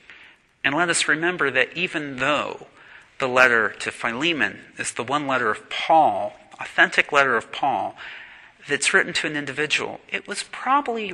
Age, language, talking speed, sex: 40-59, English, 155 wpm, male